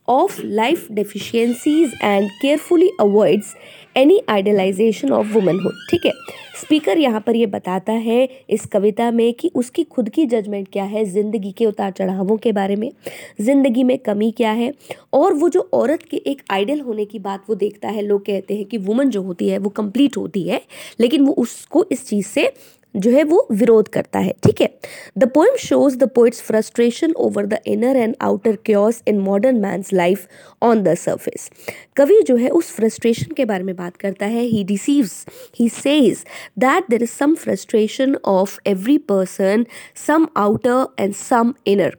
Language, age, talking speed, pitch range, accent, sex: English, 20-39, 115 wpm, 200-265 Hz, Indian, female